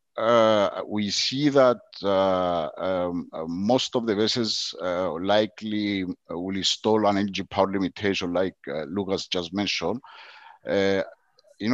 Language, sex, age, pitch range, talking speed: English, male, 50-69, 100-125 Hz, 125 wpm